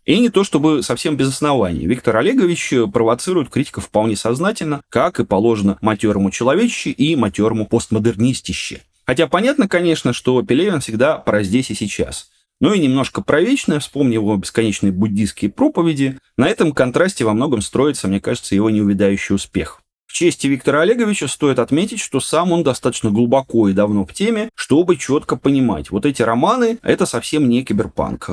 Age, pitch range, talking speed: 30-49, 105-155 Hz, 165 wpm